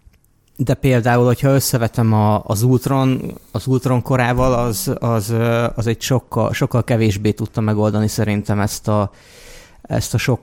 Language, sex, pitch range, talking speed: Hungarian, male, 105-120 Hz, 140 wpm